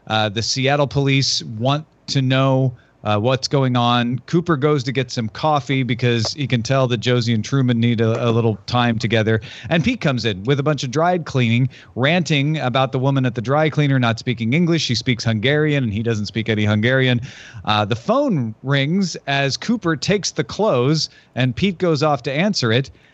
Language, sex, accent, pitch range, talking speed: English, male, American, 115-145 Hz, 200 wpm